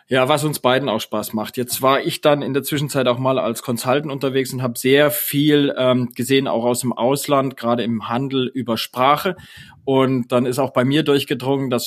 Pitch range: 120-145 Hz